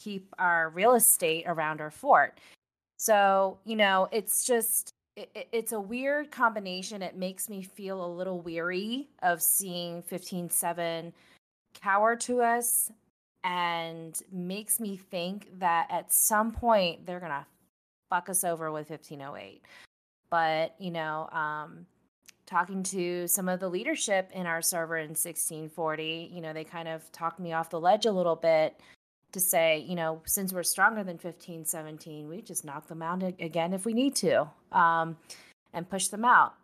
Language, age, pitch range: English, 20-39, 165-205 Hz